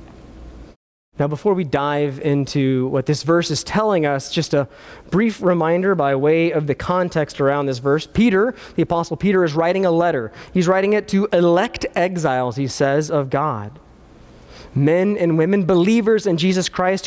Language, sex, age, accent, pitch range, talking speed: English, male, 20-39, American, 160-205 Hz, 170 wpm